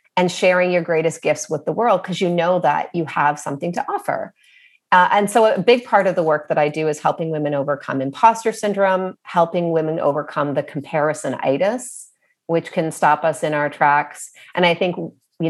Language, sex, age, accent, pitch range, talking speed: English, female, 30-49, American, 165-250 Hz, 200 wpm